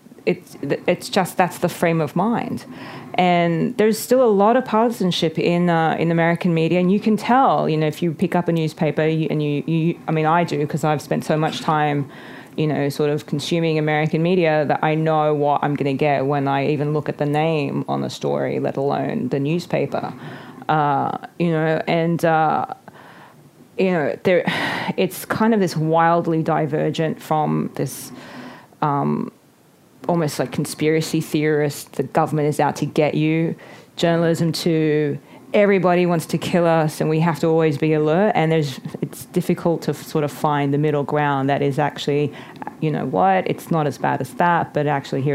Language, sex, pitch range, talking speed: English, female, 145-170 Hz, 190 wpm